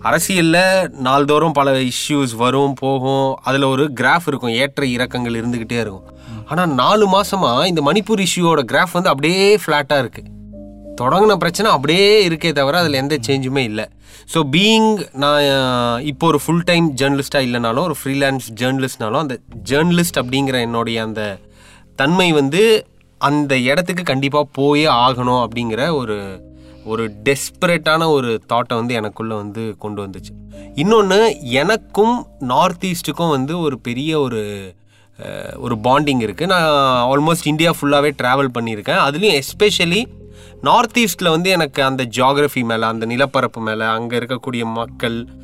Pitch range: 115-160 Hz